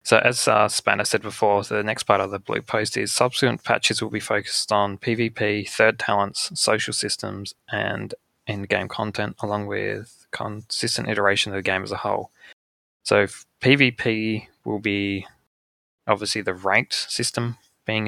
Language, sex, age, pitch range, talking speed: English, male, 20-39, 95-105 Hz, 155 wpm